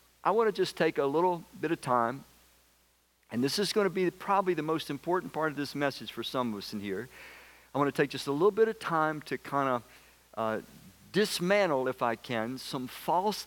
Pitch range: 130-180 Hz